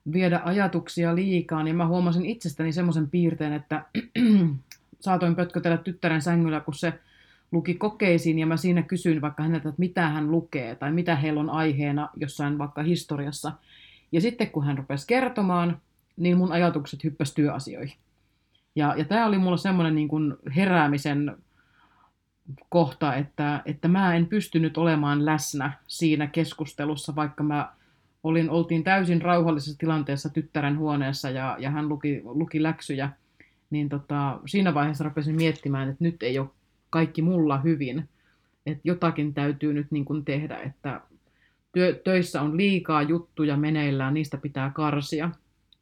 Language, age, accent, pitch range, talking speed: Finnish, 30-49, native, 145-170 Hz, 140 wpm